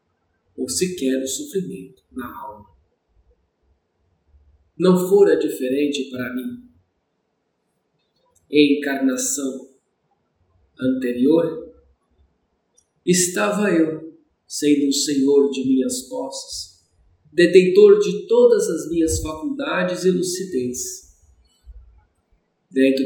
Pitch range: 130-185 Hz